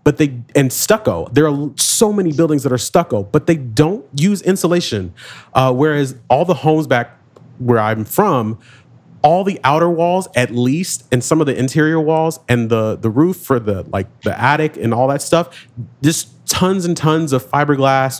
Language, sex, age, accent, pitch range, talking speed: English, male, 30-49, American, 115-155 Hz, 190 wpm